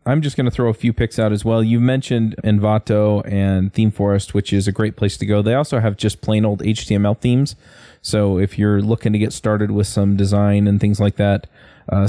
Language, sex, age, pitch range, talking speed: English, male, 20-39, 100-115 Hz, 230 wpm